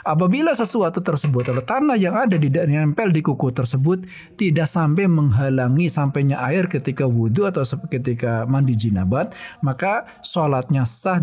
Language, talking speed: Indonesian, 140 wpm